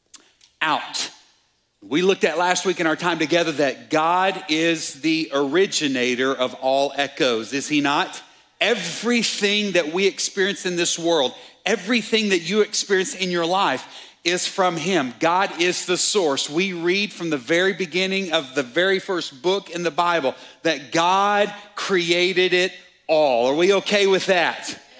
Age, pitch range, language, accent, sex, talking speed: 40-59, 175-225 Hz, English, American, male, 160 wpm